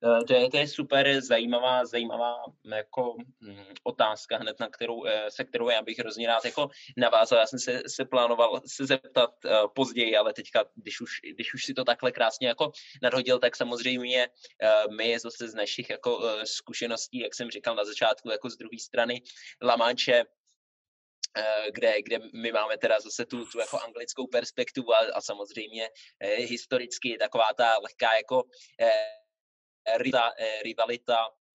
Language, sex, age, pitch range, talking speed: Czech, male, 20-39, 110-130 Hz, 165 wpm